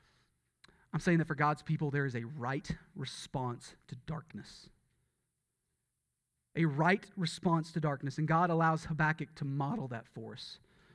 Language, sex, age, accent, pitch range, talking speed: English, male, 30-49, American, 150-235 Hz, 140 wpm